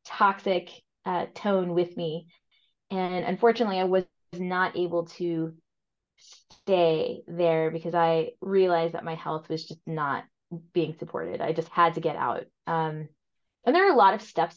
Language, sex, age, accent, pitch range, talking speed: English, female, 20-39, American, 170-195 Hz, 160 wpm